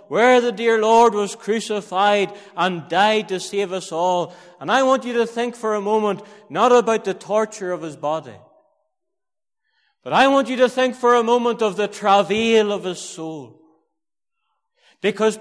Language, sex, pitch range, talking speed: English, male, 205-250 Hz, 170 wpm